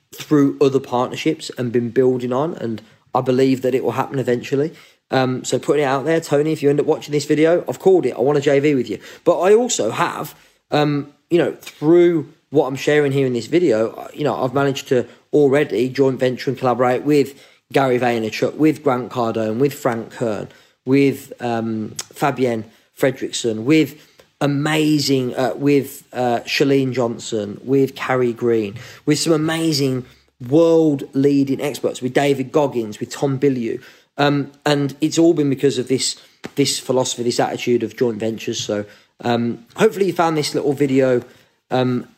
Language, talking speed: English, 175 wpm